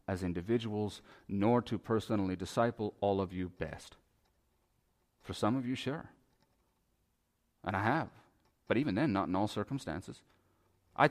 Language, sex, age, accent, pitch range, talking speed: English, male, 40-59, American, 95-125 Hz, 140 wpm